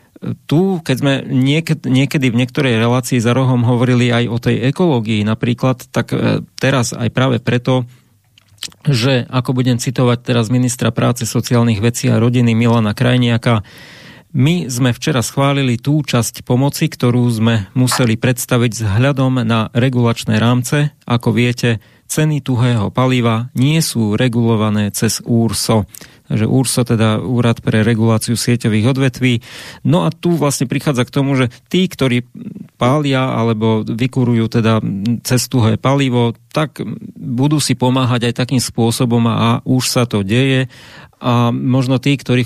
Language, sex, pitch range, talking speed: English, male, 115-130 Hz, 140 wpm